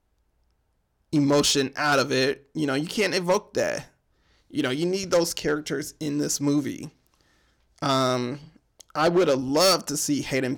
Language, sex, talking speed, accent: English, male, 155 wpm, American